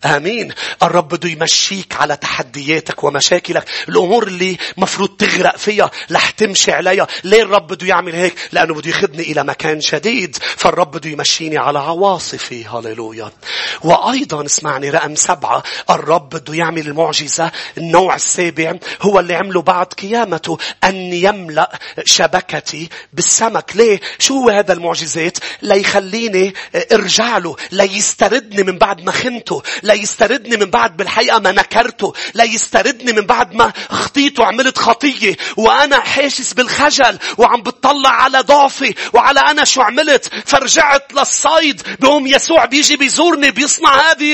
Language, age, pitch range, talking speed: English, 40-59, 180-290 Hz, 130 wpm